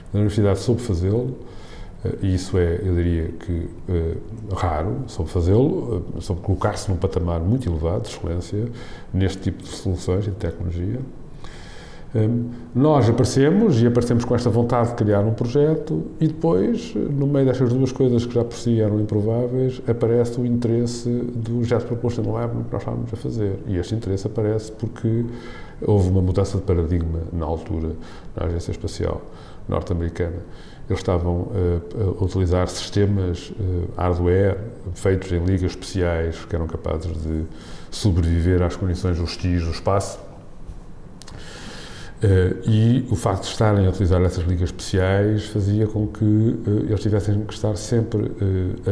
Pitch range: 90-115 Hz